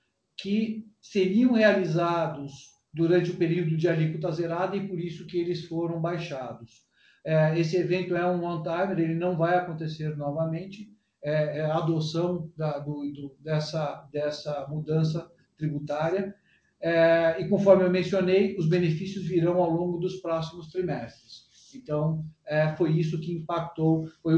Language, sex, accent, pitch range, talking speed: Portuguese, male, Brazilian, 155-180 Hz, 145 wpm